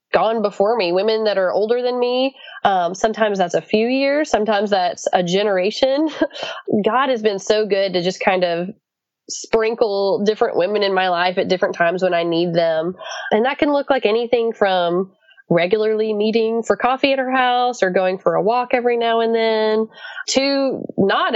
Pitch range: 190-245 Hz